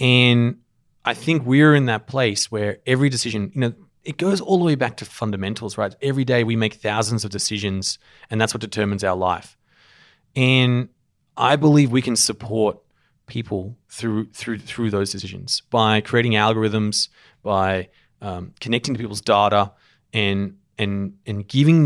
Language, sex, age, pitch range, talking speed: English, male, 30-49, 105-130 Hz, 160 wpm